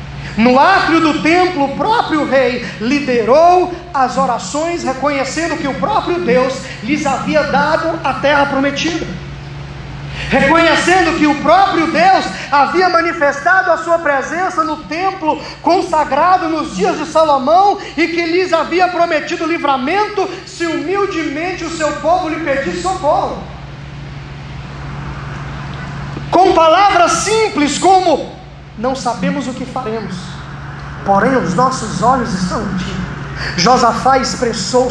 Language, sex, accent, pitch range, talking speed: Portuguese, male, Brazilian, 235-330 Hz, 120 wpm